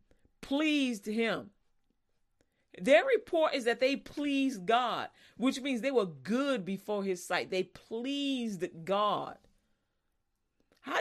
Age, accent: 40-59, American